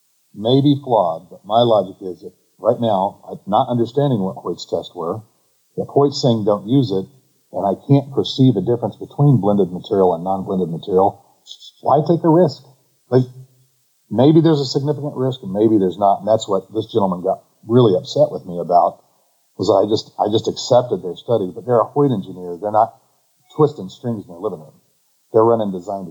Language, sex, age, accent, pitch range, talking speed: English, male, 50-69, American, 95-130 Hz, 195 wpm